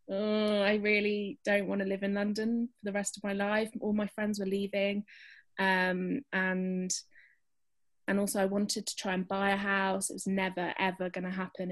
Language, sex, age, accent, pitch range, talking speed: English, female, 20-39, British, 185-215 Hz, 200 wpm